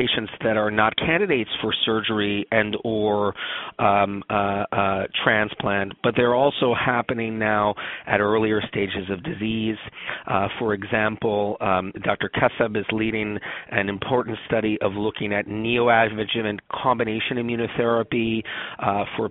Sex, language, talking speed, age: male, English, 125 wpm, 40-59